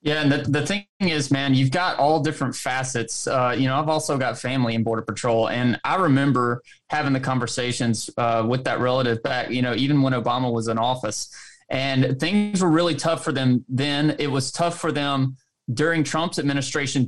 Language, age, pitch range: English, 20-39, 130-170 Hz